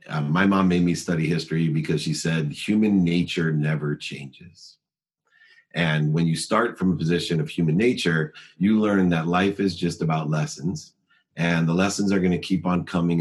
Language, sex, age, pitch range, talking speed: English, male, 40-59, 85-100 Hz, 185 wpm